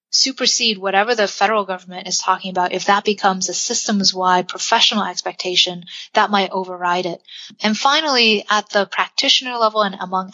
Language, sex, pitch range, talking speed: English, female, 185-215 Hz, 155 wpm